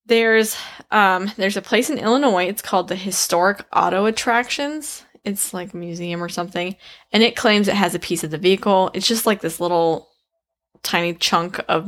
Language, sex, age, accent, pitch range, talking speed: English, female, 10-29, American, 175-215 Hz, 185 wpm